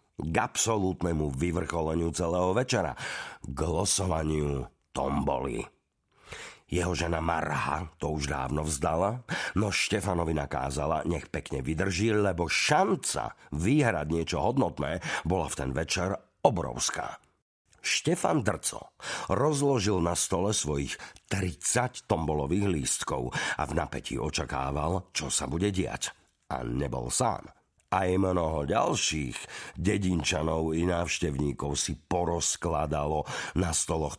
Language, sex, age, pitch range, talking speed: Slovak, male, 50-69, 75-95 Hz, 105 wpm